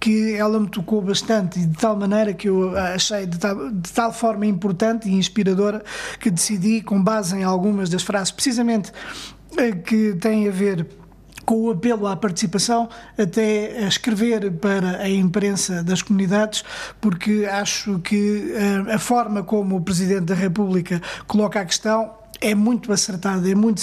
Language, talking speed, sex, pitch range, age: Portuguese, 160 wpm, male, 195-220 Hz, 20-39